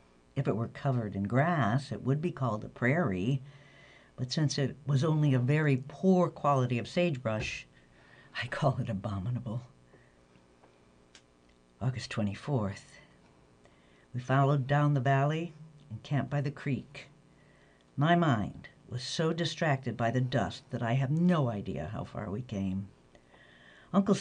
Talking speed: 140 wpm